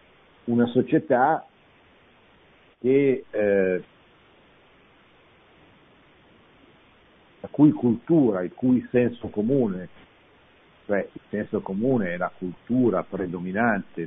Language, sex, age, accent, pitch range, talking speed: Italian, male, 50-69, native, 95-125 Hz, 80 wpm